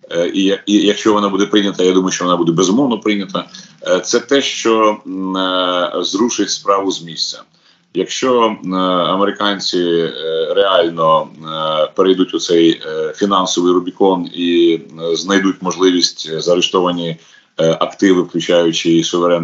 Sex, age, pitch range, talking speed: male, 30-49, 85-105 Hz, 100 wpm